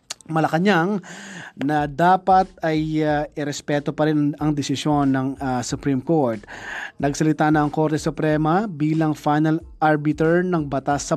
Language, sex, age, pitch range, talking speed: Filipino, male, 20-39, 140-170 Hz, 135 wpm